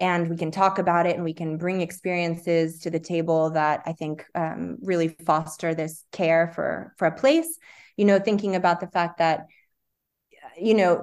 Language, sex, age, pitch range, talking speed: English, female, 20-39, 165-195 Hz, 190 wpm